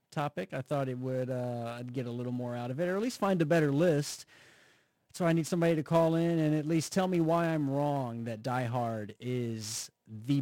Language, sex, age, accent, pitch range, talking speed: English, male, 30-49, American, 120-160 Hz, 235 wpm